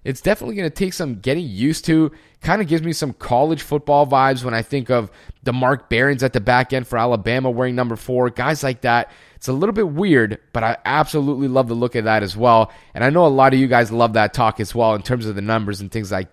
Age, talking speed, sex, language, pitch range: 30-49, 265 wpm, male, English, 120-150 Hz